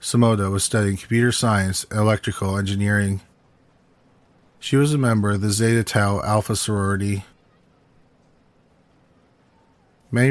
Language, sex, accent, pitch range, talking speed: English, male, American, 100-115 Hz, 110 wpm